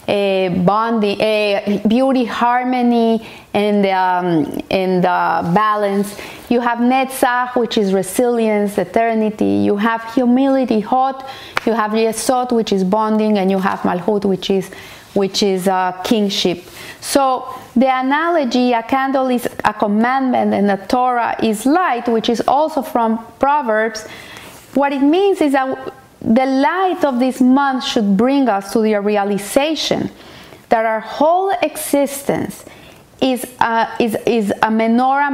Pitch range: 205-260 Hz